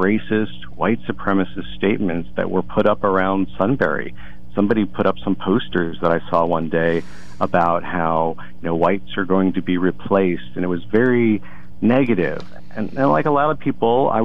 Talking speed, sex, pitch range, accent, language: 185 wpm, male, 85-115 Hz, American, English